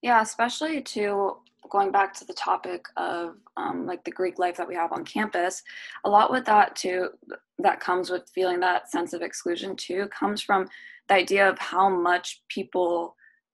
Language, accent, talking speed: English, American, 180 wpm